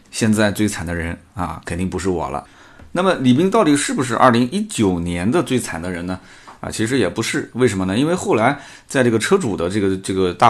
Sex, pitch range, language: male, 95-125 Hz, Chinese